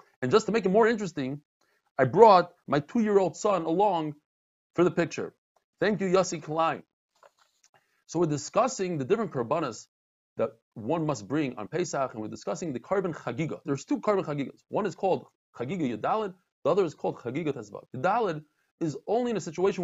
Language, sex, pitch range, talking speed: English, male, 140-195 Hz, 180 wpm